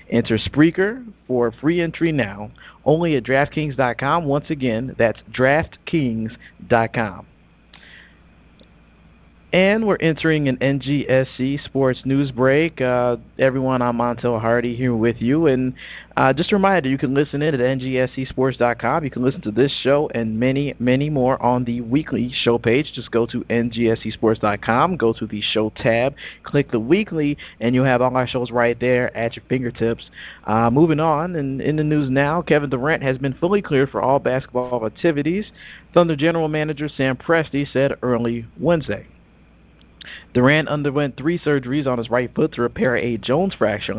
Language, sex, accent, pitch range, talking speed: English, male, American, 120-150 Hz, 160 wpm